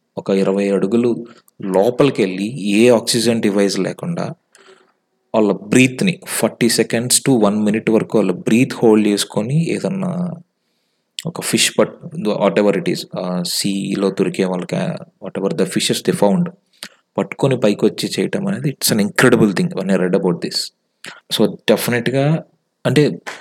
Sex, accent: male, native